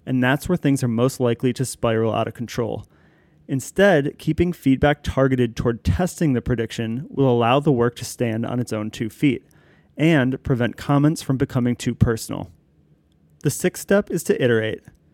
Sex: male